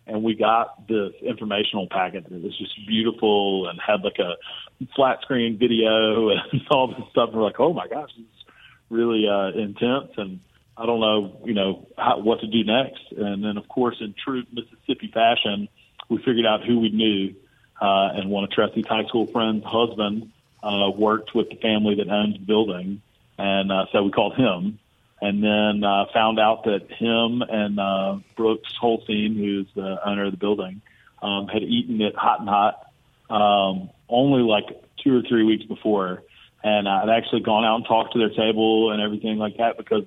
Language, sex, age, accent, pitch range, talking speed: English, male, 40-59, American, 100-115 Hz, 190 wpm